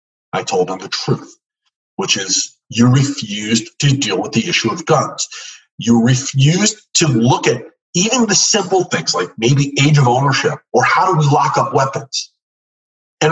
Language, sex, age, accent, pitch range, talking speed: English, male, 50-69, American, 120-165 Hz, 170 wpm